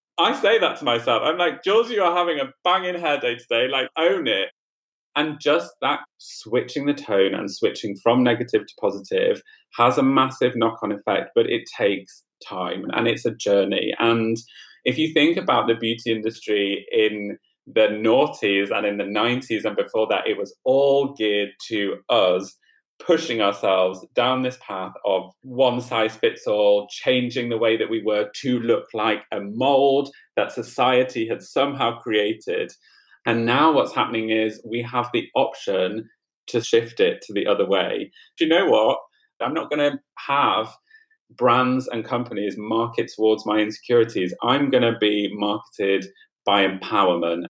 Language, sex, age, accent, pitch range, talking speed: English, male, 30-49, British, 110-145 Hz, 170 wpm